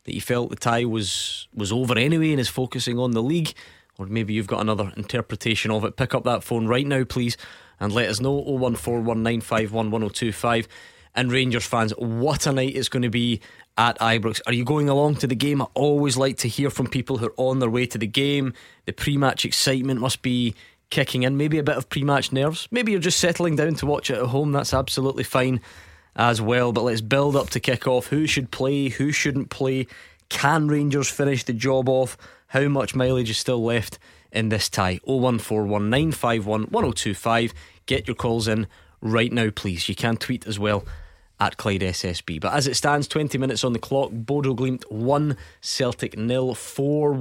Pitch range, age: 115-135 Hz, 20-39